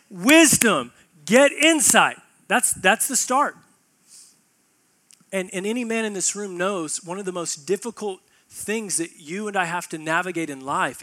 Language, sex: English, male